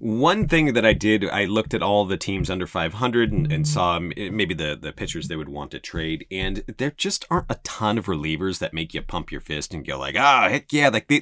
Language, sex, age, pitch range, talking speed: English, male, 30-49, 95-145 Hz, 250 wpm